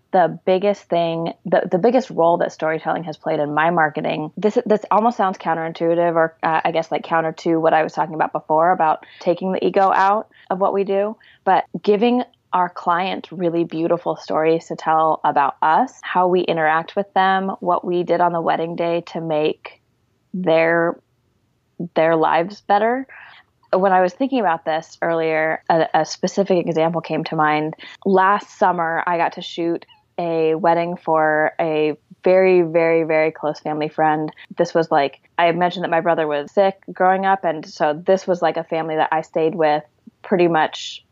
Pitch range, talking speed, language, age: 155-180 Hz, 185 wpm, English, 20-39